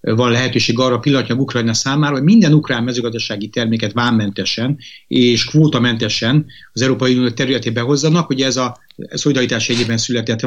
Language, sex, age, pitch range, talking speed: Hungarian, male, 30-49, 115-140 Hz, 145 wpm